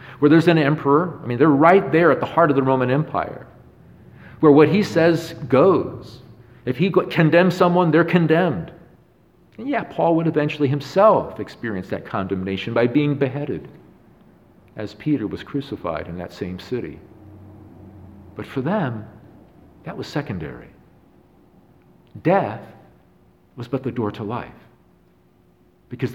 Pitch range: 105-150 Hz